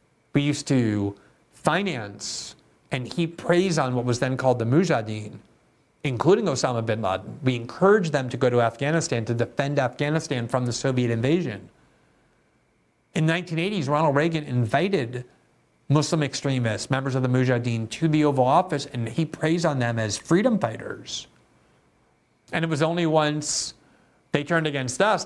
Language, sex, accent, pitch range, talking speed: English, male, American, 125-170 Hz, 150 wpm